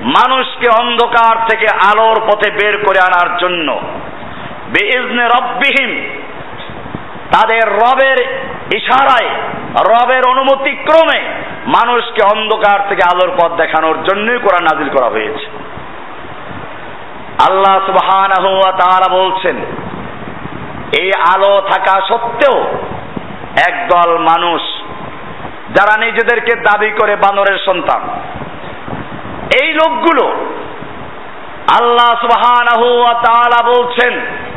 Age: 50-69